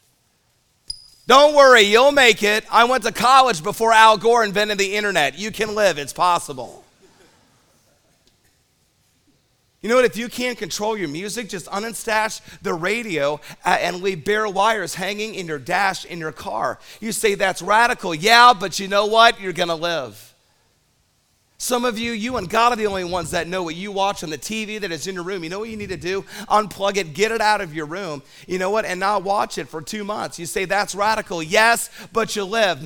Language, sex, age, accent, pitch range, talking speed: English, male, 40-59, American, 170-220 Hz, 205 wpm